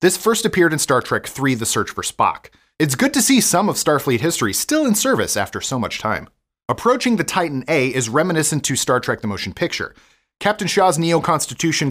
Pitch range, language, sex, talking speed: 120-170 Hz, English, male, 210 wpm